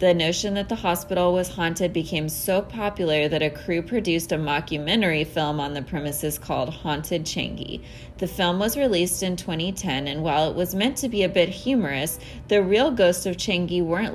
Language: English